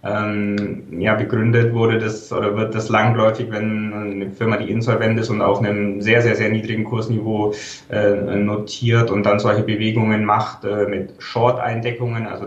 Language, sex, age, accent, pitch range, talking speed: German, male, 20-39, German, 105-115 Hz, 160 wpm